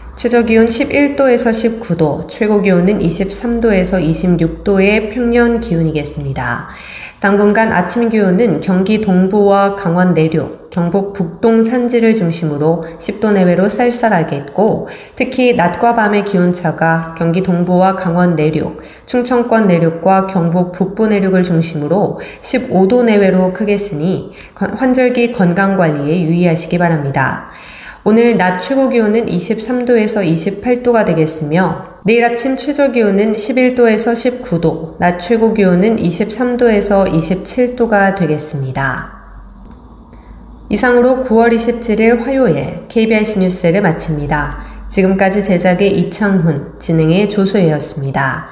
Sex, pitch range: female, 170-230 Hz